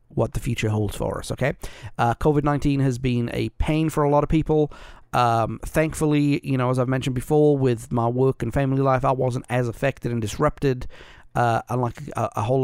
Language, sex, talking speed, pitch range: English, male, 205 wpm, 120-150 Hz